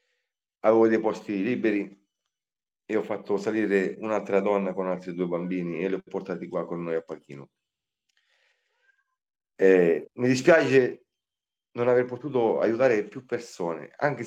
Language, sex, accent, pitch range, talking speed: Italian, male, native, 95-120 Hz, 140 wpm